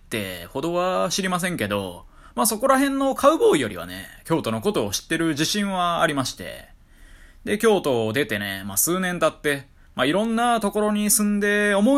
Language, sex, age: Japanese, male, 20-39